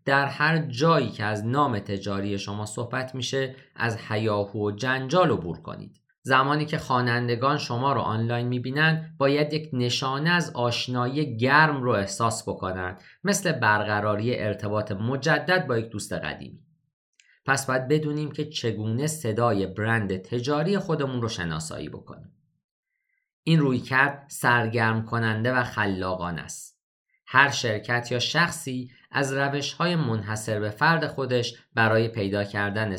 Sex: male